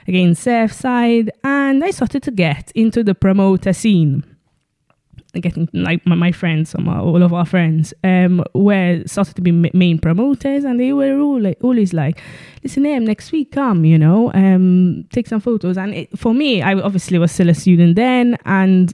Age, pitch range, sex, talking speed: 20-39, 165-200 Hz, female, 190 wpm